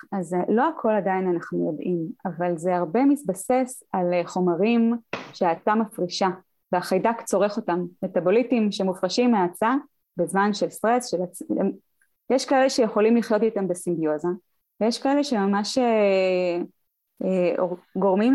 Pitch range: 180-230 Hz